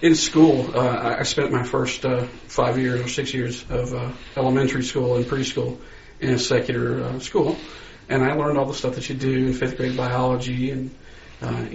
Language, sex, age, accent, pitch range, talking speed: English, male, 40-59, American, 120-135 Hz, 200 wpm